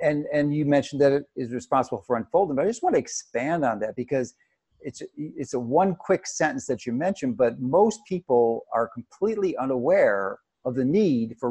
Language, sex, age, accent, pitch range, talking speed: English, male, 50-69, American, 125-190 Hz, 200 wpm